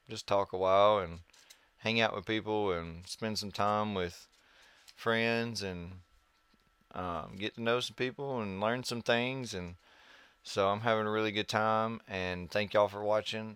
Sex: male